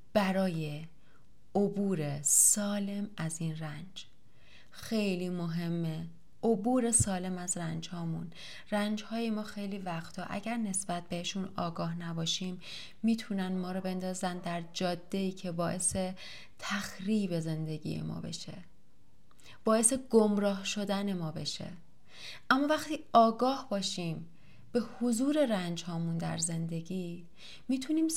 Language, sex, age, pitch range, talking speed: Persian, female, 30-49, 170-205 Hz, 115 wpm